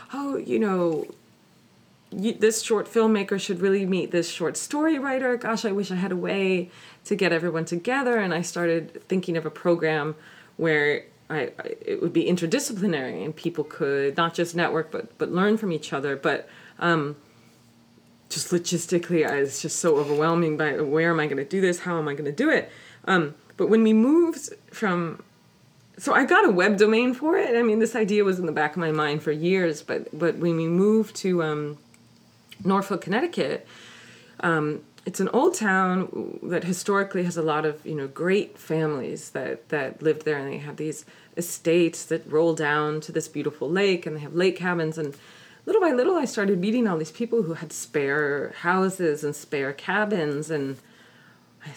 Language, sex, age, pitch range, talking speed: English, female, 20-39, 155-200 Hz, 190 wpm